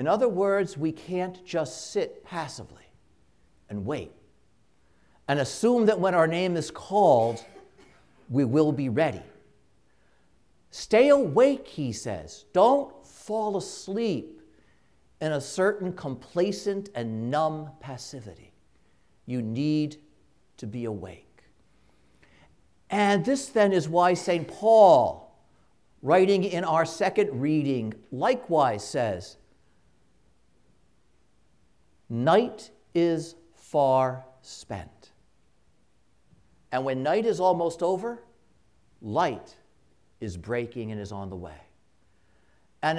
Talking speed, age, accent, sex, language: 105 wpm, 60-79, American, male, English